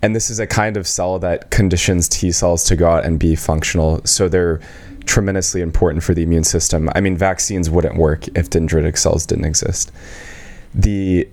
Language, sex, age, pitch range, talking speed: English, male, 20-39, 85-95 Hz, 190 wpm